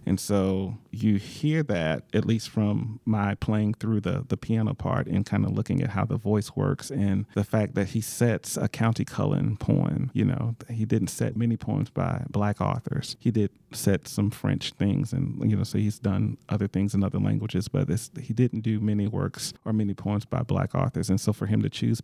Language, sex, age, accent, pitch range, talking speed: English, male, 40-59, American, 100-125 Hz, 215 wpm